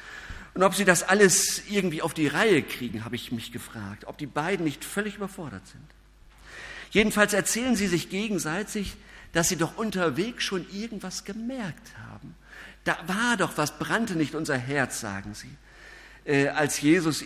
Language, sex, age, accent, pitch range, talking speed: German, male, 50-69, German, 130-185 Hz, 165 wpm